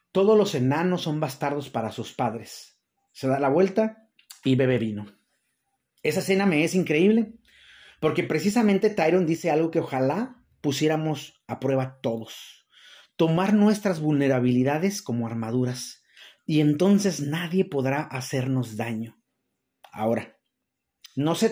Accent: Mexican